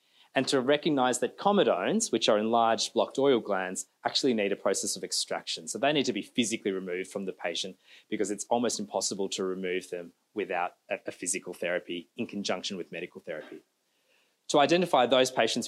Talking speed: 180 wpm